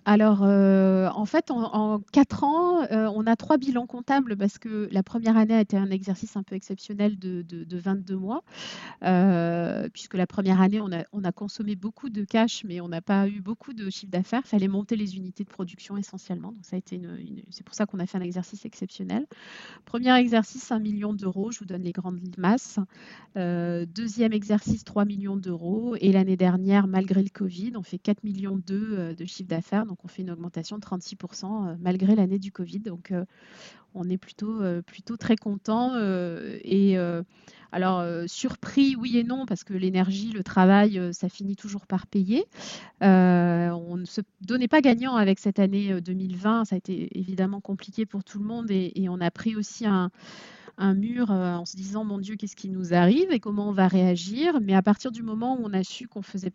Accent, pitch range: French, 185-220 Hz